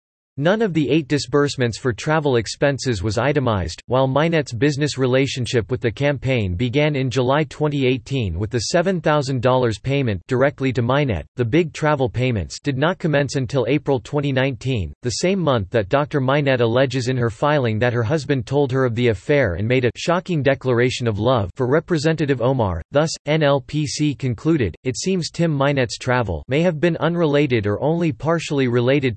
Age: 40-59